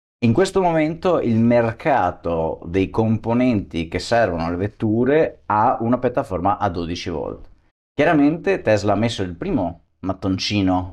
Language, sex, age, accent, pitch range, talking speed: Italian, male, 30-49, native, 90-110 Hz, 130 wpm